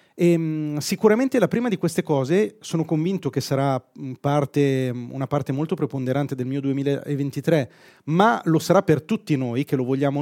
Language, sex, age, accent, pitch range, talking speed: Italian, male, 30-49, native, 135-165 Hz, 170 wpm